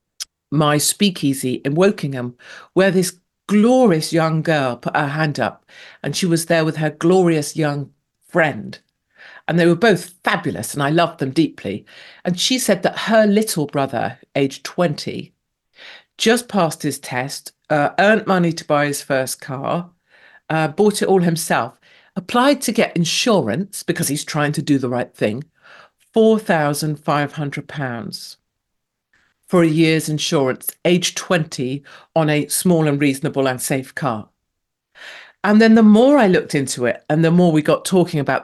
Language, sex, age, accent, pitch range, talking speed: English, female, 50-69, British, 135-180 Hz, 160 wpm